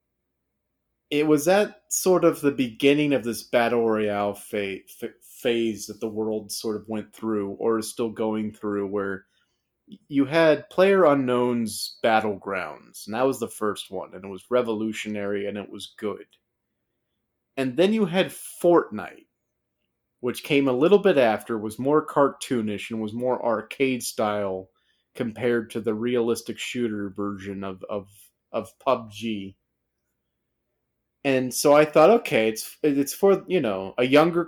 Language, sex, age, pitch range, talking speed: English, male, 30-49, 105-135 Hz, 150 wpm